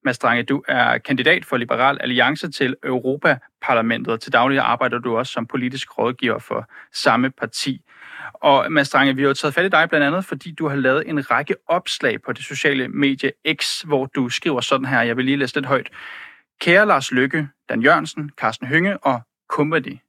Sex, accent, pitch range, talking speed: male, native, 130-155 Hz, 190 wpm